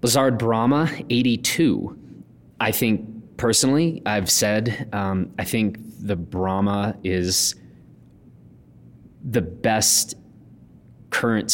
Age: 30-49